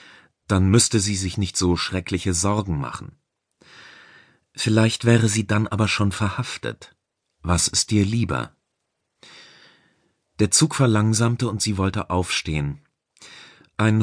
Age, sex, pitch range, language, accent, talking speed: 40-59, male, 85-115 Hz, German, German, 120 wpm